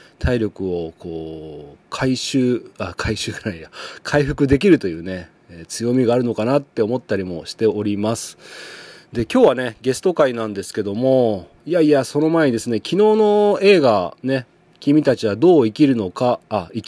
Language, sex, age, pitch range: Japanese, male, 30-49, 105-150 Hz